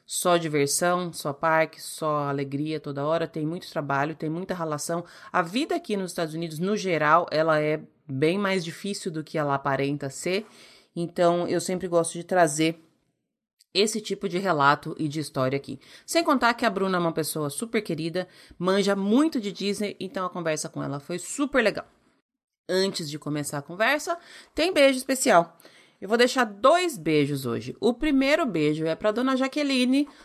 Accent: Brazilian